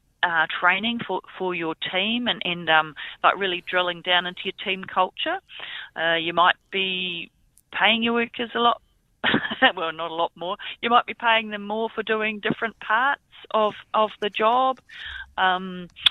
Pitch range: 170-215 Hz